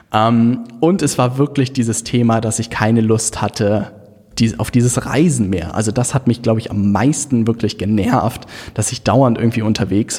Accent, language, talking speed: German, German, 190 wpm